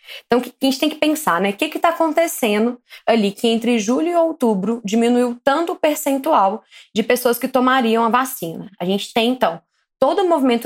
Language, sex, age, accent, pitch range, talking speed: Portuguese, female, 20-39, Brazilian, 195-250 Hz, 210 wpm